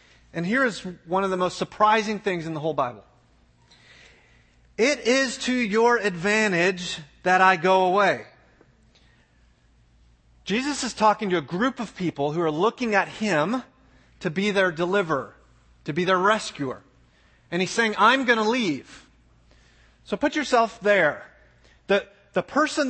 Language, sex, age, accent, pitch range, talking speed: English, male, 30-49, American, 160-220 Hz, 150 wpm